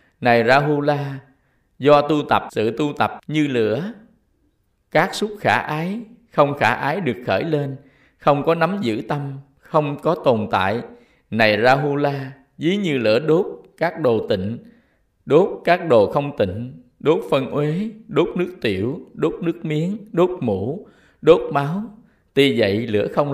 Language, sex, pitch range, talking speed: Vietnamese, male, 130-165 Hz, 155 wpm